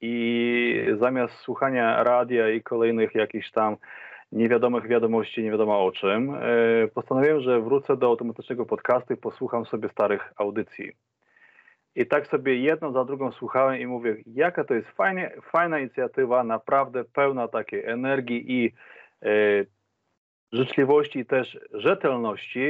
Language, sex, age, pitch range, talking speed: Polish, male, 30-49, 115-140 Hz, 130 wpm